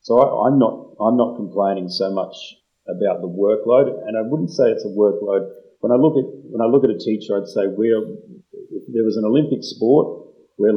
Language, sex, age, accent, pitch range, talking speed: English, male, 30-49, Australian, 95-115 Hz, 215 wpm